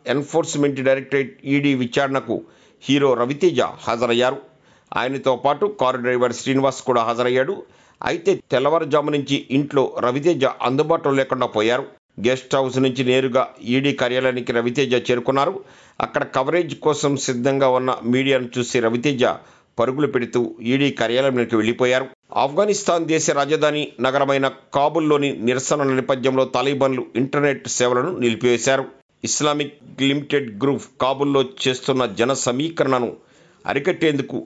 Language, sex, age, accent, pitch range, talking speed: Telugu, male, 50-69, native, 125-140 Hz, 110 wpm